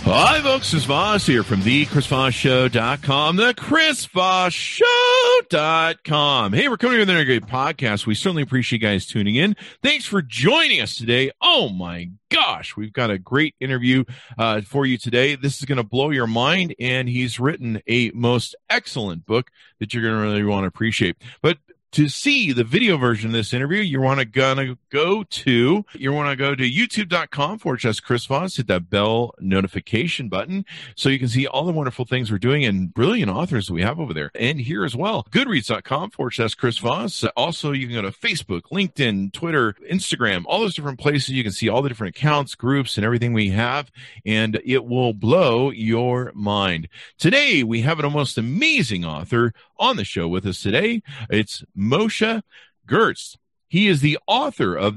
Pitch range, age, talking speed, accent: 115-160 Hz, 50-69, 185 wpm, American